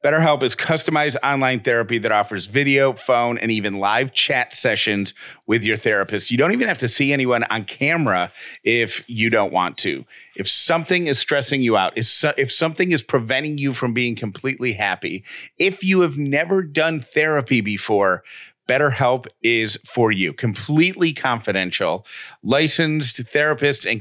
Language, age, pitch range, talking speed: English, 40-59, 115-140 Hz, 155 wpm